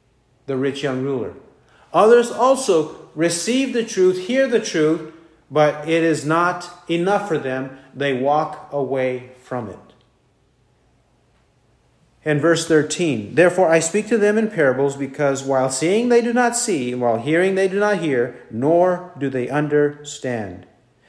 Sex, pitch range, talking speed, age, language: male, 135-185 Hz, 145 wpm, 50-69, English